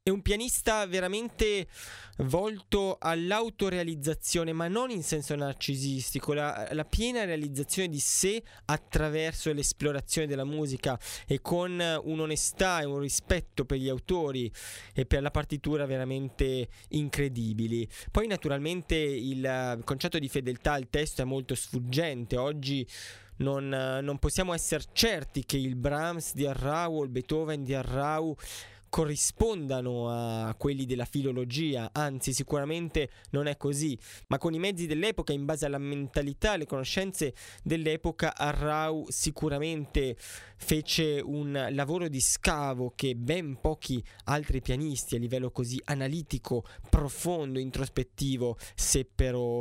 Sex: male